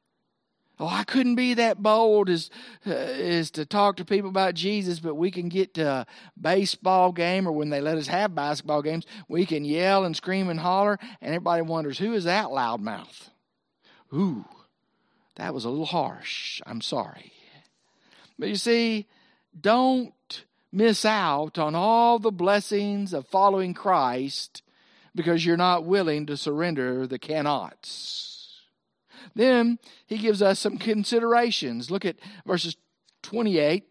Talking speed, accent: 150 wpm, American